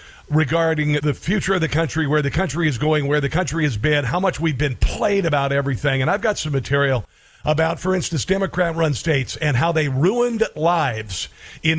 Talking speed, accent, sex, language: 200 wpm, American, male, English